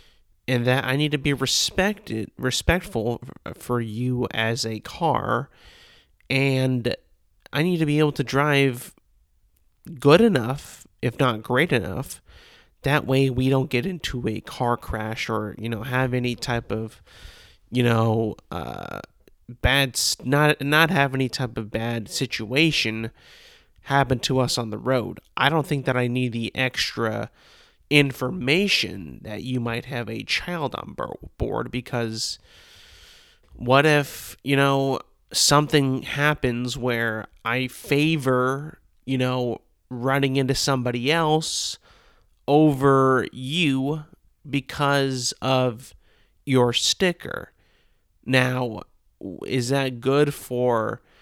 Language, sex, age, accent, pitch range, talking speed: English, male, 30-49, American, 115-140 Hz, 125 wpm